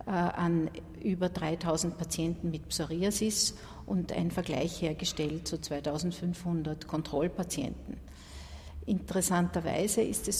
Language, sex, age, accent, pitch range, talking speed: German, female, 60-79, Austrian, 160-195 Hz, 90 wpm